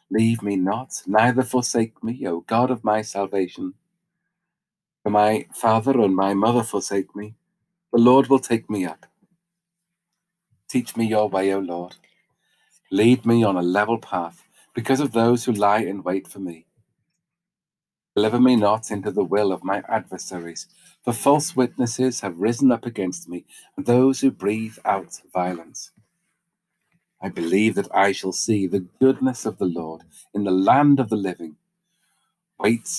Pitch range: 100-140 Hz